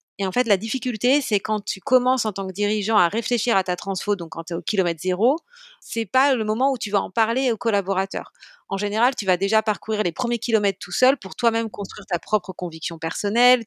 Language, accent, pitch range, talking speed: French, French, 190-245 Hz, 235 wpm